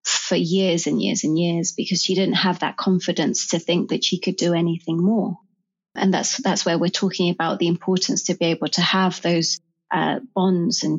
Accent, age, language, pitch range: British, 30-49, English, 170-195 Hz